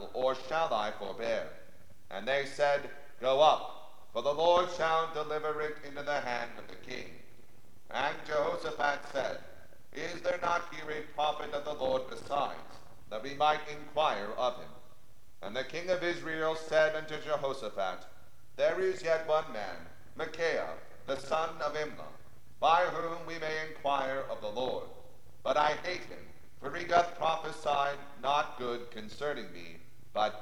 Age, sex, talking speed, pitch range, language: 50-69, male, 155 wpm, 130-155 Hz, English